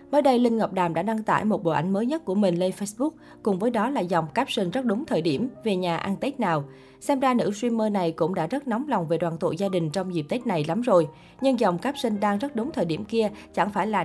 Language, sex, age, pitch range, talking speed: Vietnamese, female, 20-39, 175-240 Hz, 280 wpm